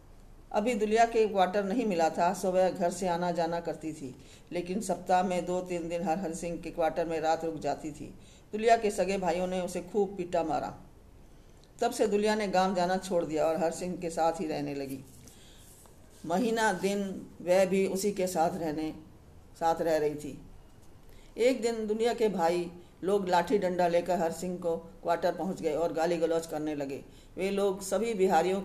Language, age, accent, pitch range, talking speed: Hindi, 50-69, native, 165-190 Hz, 185 wpm